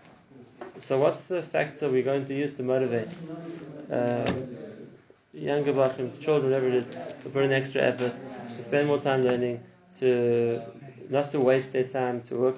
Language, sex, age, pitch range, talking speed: English, male, 20-39, 120-145 Hz, 165 wpm